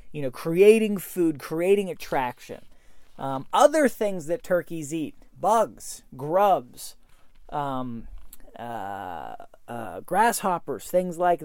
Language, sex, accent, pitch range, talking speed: English, male, American, 155-215 Hz, 105 wpm